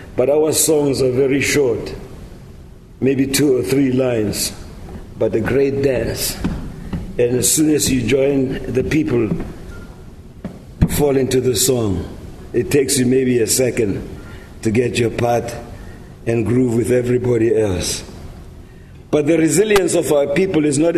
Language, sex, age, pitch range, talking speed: English, male, 50-69, 125-155 Hz, 145 wpm